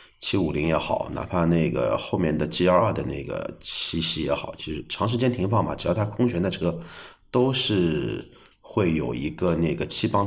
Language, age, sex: Chinese, 30-49, male